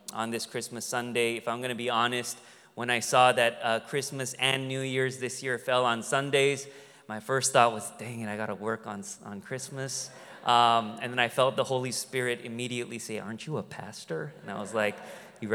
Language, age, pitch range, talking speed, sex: English, 30-49, 110-135 Hz, 215 wpm, male